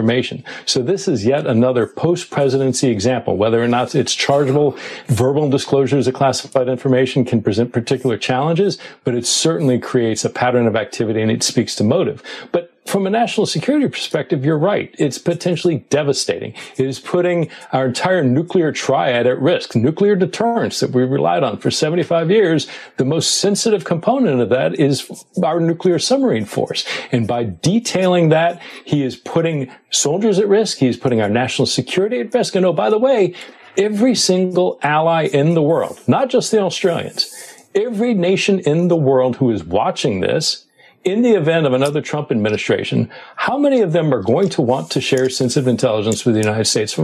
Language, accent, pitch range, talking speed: English, American, 130-185 Hz, 180 wpm